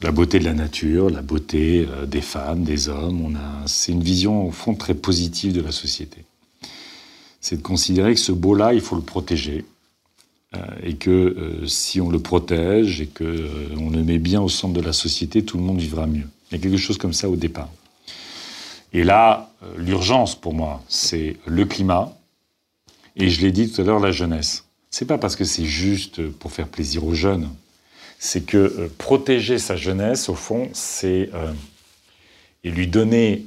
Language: French